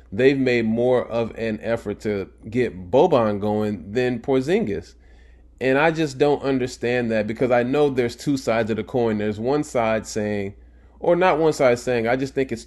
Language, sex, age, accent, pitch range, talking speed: English, male, 20-39, American, 105-130 Hz, 190 wpm